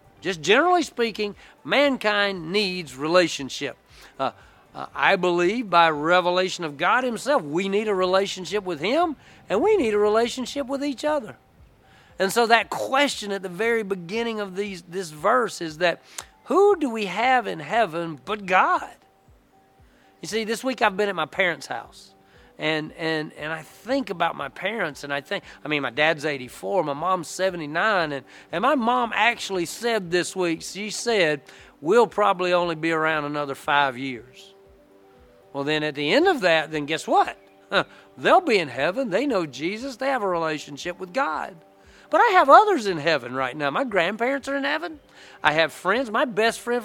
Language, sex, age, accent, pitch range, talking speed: English, male, 40-59, American, 155-230 Hz, 180 wpm